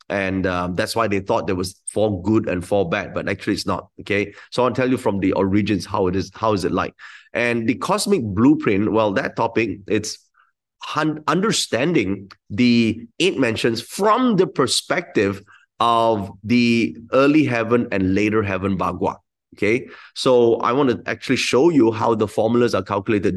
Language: English